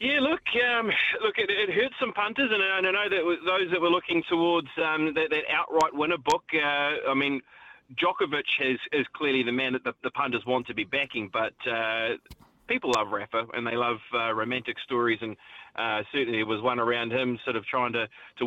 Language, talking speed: English, 220 wpm